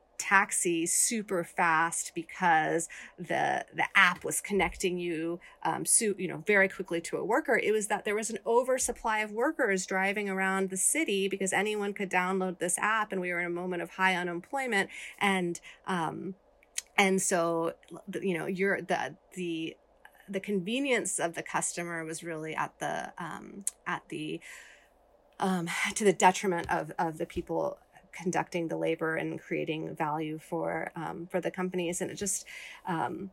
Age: 30-49